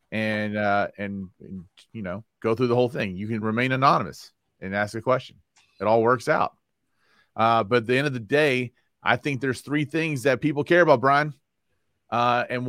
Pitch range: 100-130 Hz